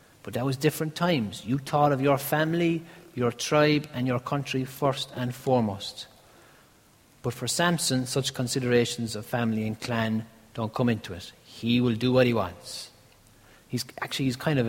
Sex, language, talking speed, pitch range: male, English, 170 wpm, 110-130 Hz